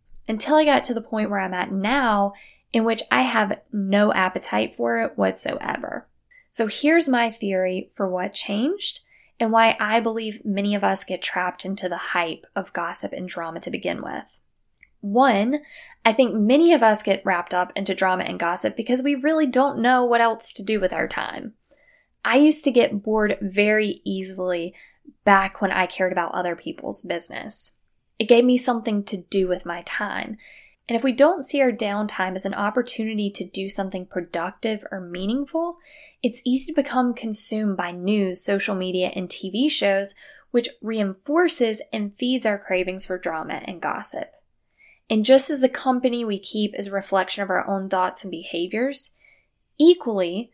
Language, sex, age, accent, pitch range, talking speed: English, female, 10-29, American, 185-240 Hz, 175 wpm